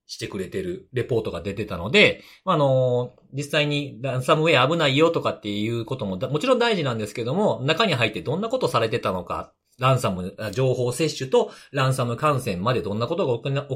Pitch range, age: 95-160 Hz, 40-59